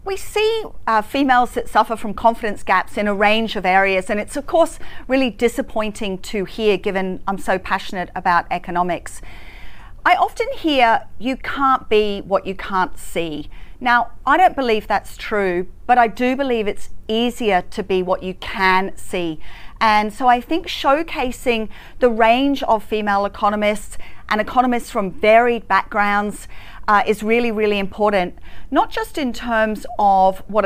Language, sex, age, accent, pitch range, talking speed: English, female, 40-59, Australian, 190-245 Hz, 160 wpm